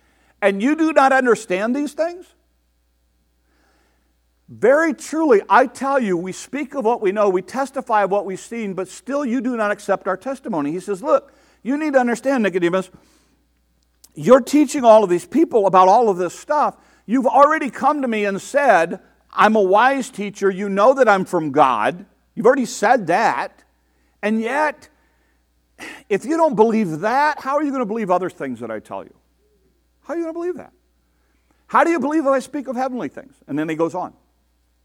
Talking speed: 195 wpm